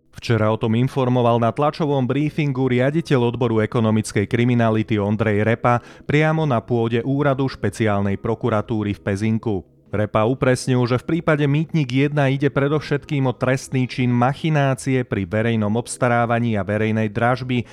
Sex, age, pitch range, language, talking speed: male, 30-49, 110-140 Hz, Slovak, 135 wpm